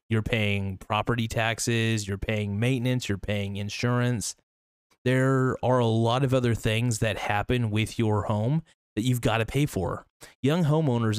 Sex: male